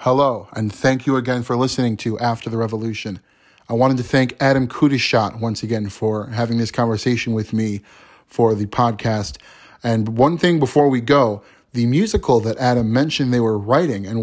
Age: 30-49